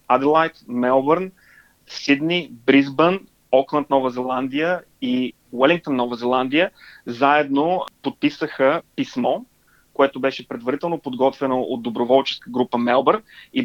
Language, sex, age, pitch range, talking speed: Bulgarian, male, 30-49, 125-145 Hz, 100 wpm